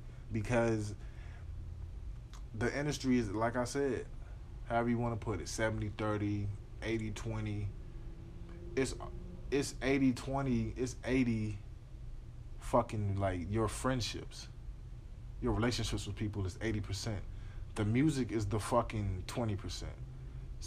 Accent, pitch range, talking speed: American, 105-120 Hz, 100 wpm